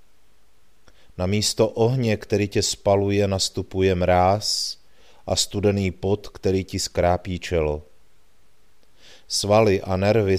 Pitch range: 85-105 Hz